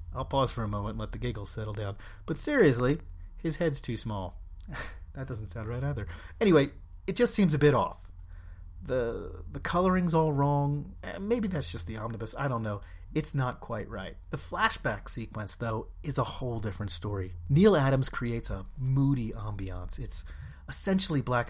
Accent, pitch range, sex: American, 100-135 Hz, male